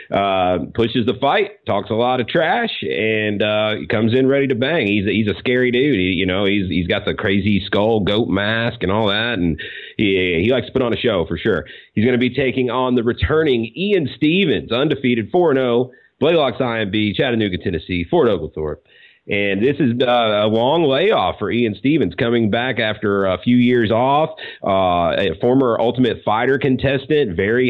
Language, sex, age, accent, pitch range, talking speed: English, male, 40-59, American, 100-125 Hz, 190 wpm